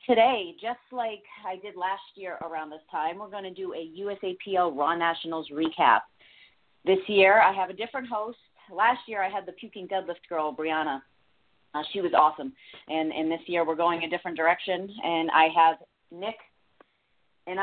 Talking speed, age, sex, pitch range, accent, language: 180 wpm, 30-49, female, 155-195 Hz, American, English